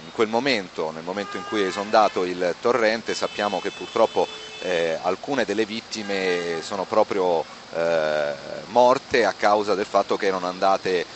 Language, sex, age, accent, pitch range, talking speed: Italian, male, 40-59, native, 90-120 Hz, 150 wpm